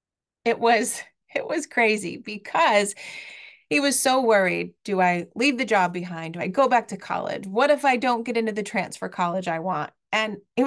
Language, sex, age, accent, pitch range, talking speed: English, female, 30-49, American, 185-245 Hz, 195 wpm